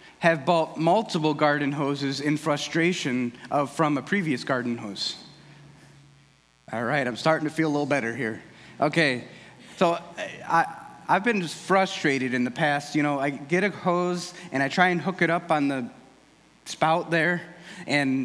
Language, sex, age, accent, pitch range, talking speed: English, male, 30-49, American, 140-170 Hz, 170 wpm